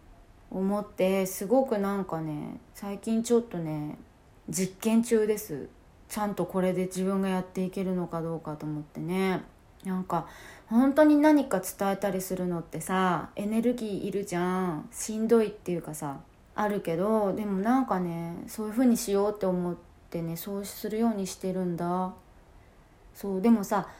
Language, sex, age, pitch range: Japanese, female, 20-39, 180-235 Hz